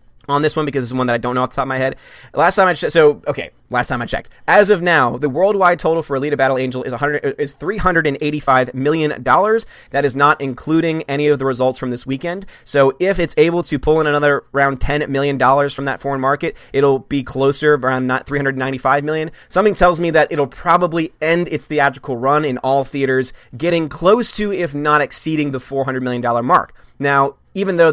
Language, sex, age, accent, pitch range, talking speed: English, male, 20-39, American, 135-165 Hz, 240 wpm